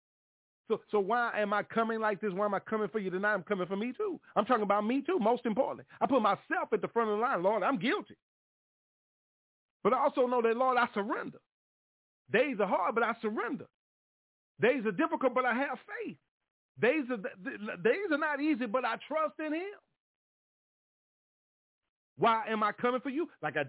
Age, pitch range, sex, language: 40-59, 150-235 Hz, male, English